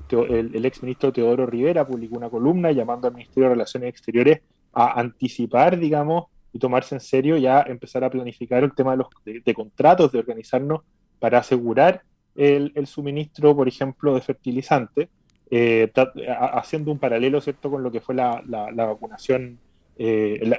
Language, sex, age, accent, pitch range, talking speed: Spanish, male, 30-49, Argentinian, 120-145 Hz, 180 wpm